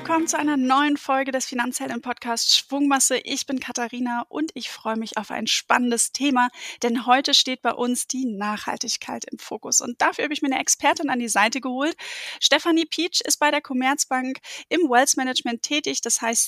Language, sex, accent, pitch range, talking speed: German, female, German, 235-285 Hz, 190 wpm